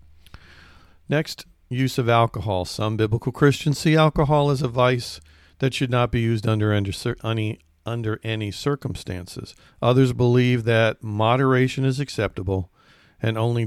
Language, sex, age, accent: English, male, 50-69, American